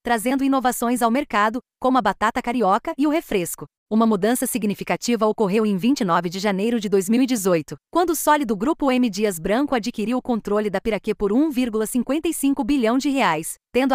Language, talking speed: Portuguese, 165 wpm